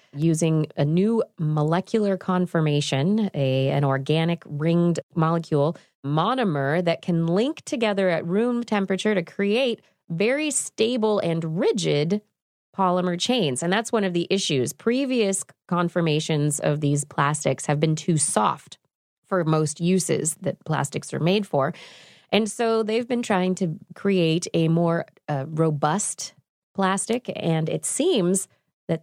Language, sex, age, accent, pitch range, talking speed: English, female, 20-39, American, 160-215 Hz, 135 wpm